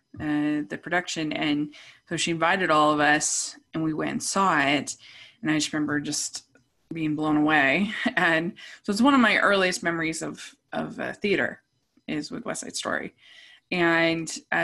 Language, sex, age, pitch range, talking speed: English, female, 20-39, 175-235 Hz, 170 wpm